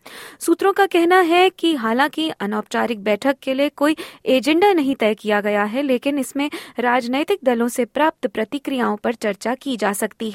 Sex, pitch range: female, 220-300 Hz